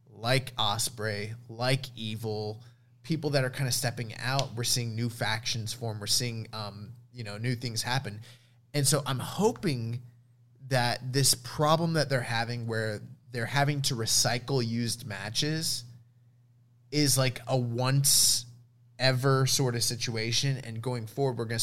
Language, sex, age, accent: English, male, 20-39, American